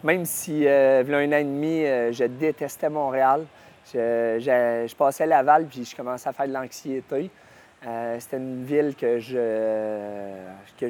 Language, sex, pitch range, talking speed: French, male, 120-150 Hz, 175 wpm